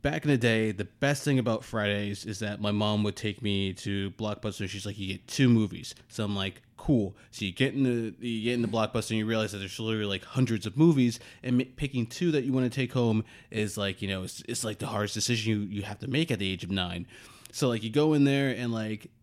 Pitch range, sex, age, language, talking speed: 100-120 Hz, male, 20-39, English, 260 wpm